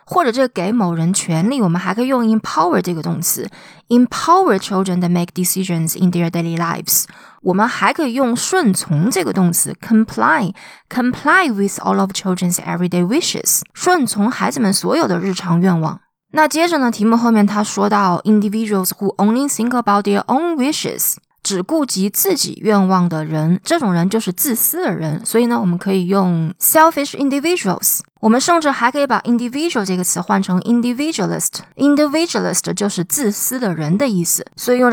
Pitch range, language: 185-250 Hz, Chinese